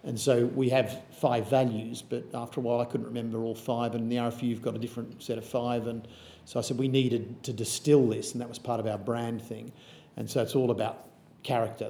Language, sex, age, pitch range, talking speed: English, male, 50-69, 115-135 Hz, 245 wpm